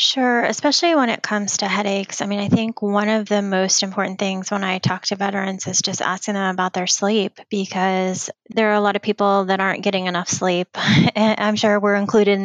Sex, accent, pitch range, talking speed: female, American, 180-200 Hz, 220 wpm